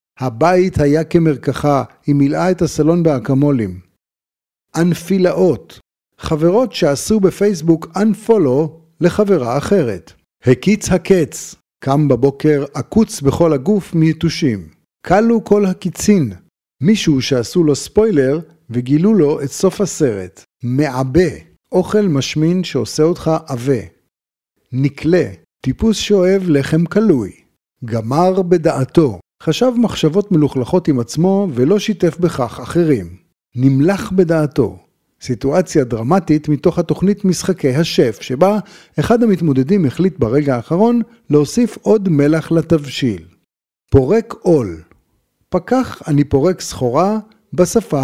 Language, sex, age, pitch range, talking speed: Hebrew, male, 50-69, 135-185 Hz, 100 wpm